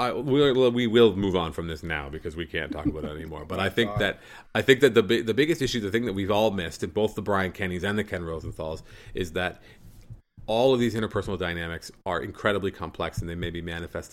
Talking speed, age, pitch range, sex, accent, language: 235 wpm, 30-49, 85-100 Hz, male, American, English